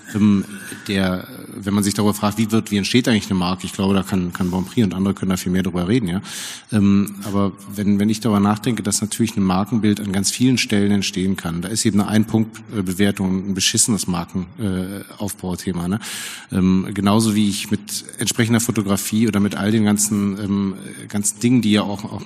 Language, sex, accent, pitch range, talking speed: German, male, German, 100-115 Hz, 190 wpm